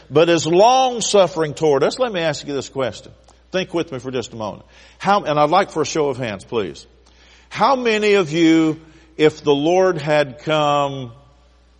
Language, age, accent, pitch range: English, 50-69, American, 135-205 Hz